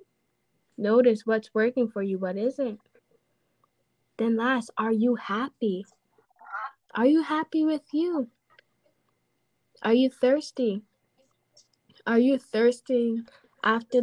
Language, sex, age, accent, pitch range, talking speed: English, female, 10-29, American, 210-250 Hz, 105 wpm